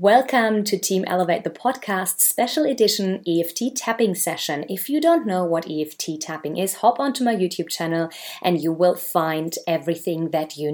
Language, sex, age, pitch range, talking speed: English, female, 30-49, 160-215 Hz, 175 wpm